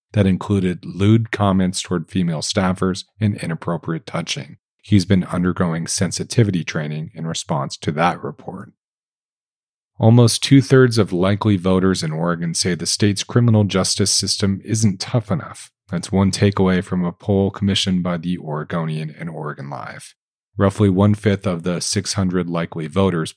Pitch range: 85-105 Hz